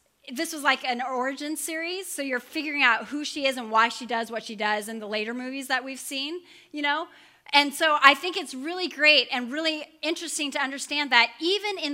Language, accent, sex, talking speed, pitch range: English, American, female, 220 wpm, 235-300 Hz